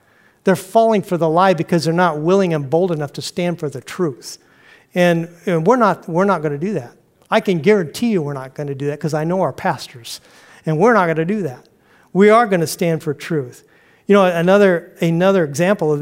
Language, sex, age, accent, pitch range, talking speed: English, male, 50-69, American, 150-185 Hz, 215 wpm